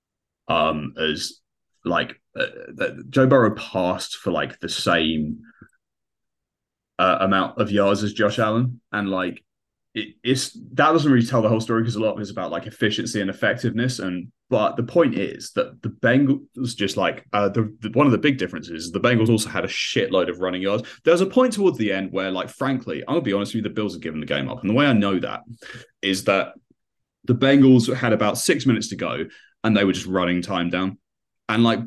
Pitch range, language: 100-130 Hz, English